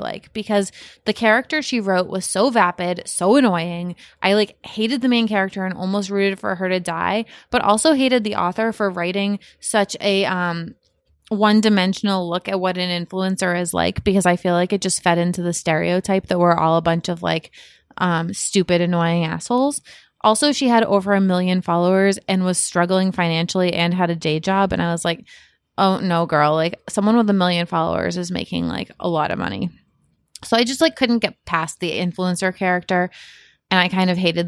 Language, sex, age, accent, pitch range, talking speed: English, female, 20-39, American, 175-210 Hz, 200 wpm